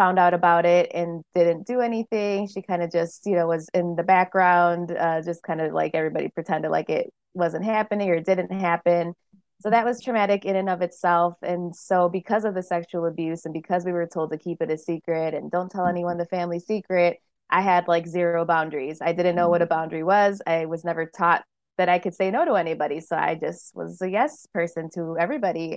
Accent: American